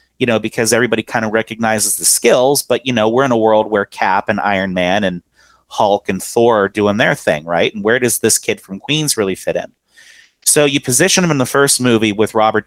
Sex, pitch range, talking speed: male, 110-130 Hz, 235 wpm